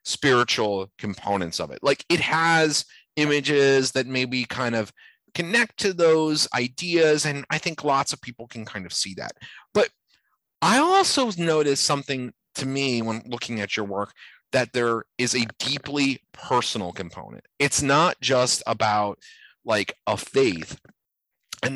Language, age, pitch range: English, 30-49, 115-150 Hz